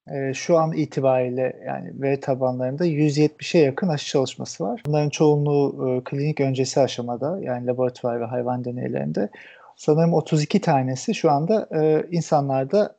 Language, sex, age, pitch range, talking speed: Turkish, male, 40-59, 130-160 Hz, 125 wpm